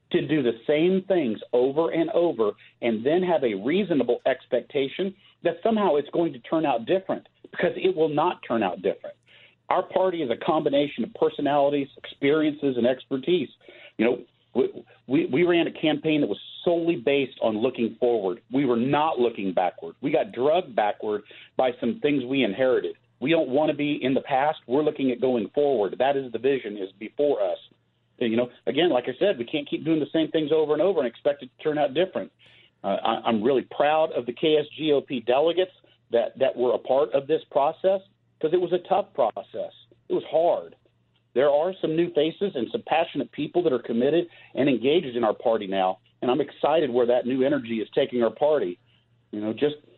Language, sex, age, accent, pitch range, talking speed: English, male, 50-69, American, 125-165 Hz, 205 wpm